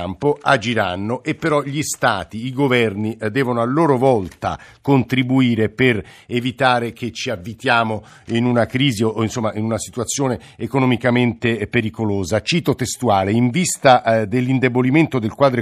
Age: 50-69